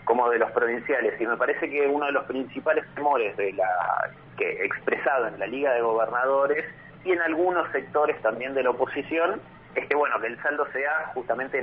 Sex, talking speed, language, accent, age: male, 195 wpm, Spanish, Argentinian, 30-49